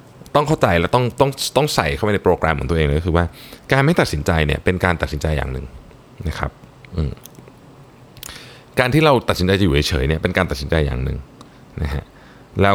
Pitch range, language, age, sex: 80-120 Hz, Thai, 20-39, male